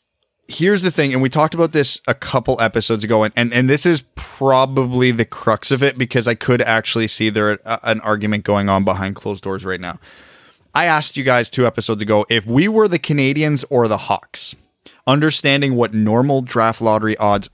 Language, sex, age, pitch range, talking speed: English, male, 20-39, 105-140 Hz, 200 wpm